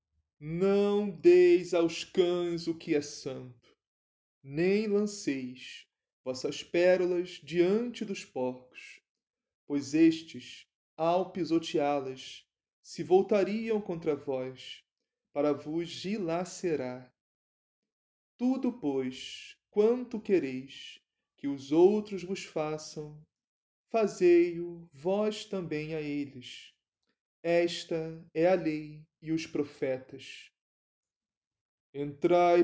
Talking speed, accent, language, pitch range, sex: 90 wpm, Brazilian, Portuguese, 140-185 Hz, male